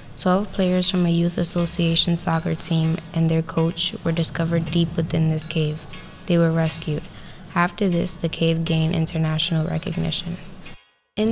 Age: 10-29